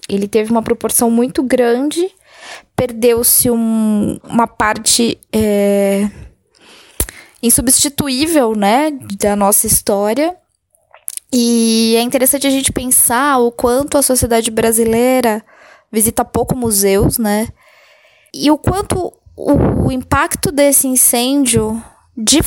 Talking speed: 100 wpm